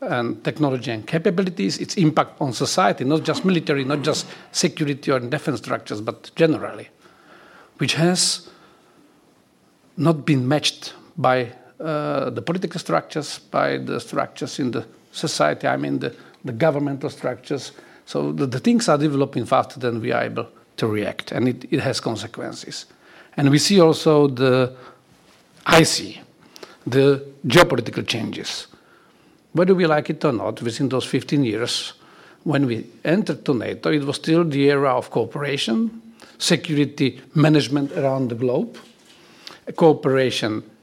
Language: Slovak